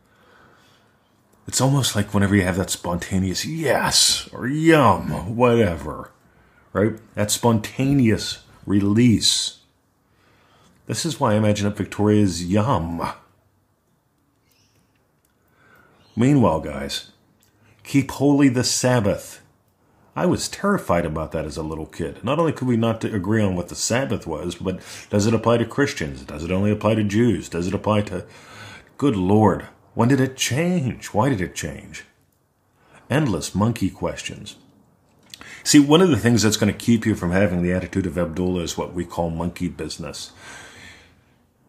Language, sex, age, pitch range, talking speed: English, male, 40-59, 95-115 Hz, 145 wpm